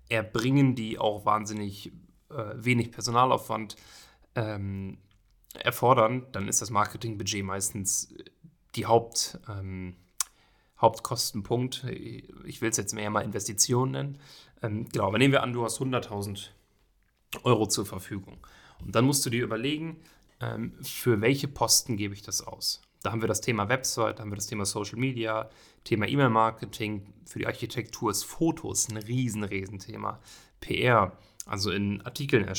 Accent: German